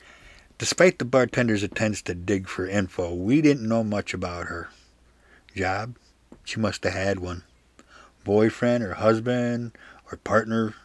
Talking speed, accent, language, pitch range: 140 wpm, American, English, 95-115 Hz